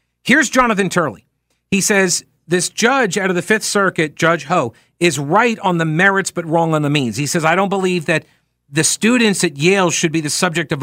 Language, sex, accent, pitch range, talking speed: English, male, American, 145-195 Hz, 215 wpm